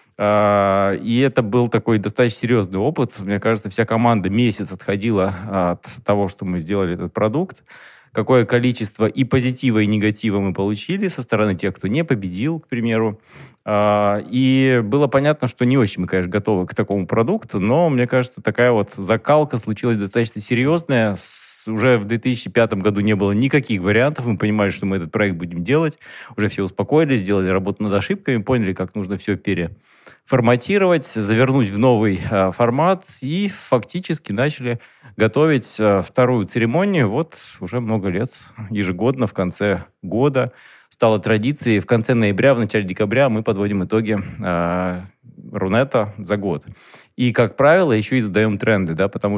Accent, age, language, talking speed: native, 20-39, Russian, 155 wpm